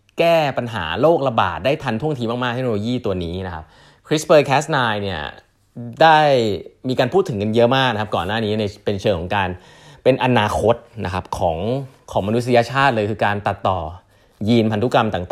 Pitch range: 100-135 Hz